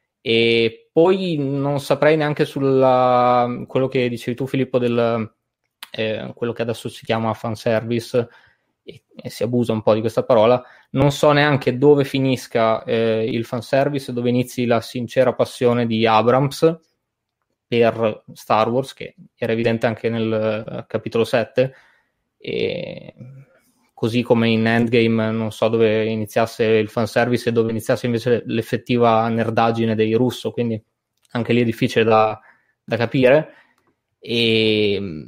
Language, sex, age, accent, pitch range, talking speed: Italian, male, 20-39, native, 115-135 Hz, 140 wpm